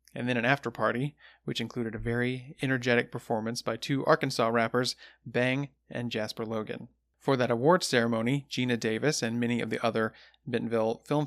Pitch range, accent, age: 115-135 Hz, American, 30-49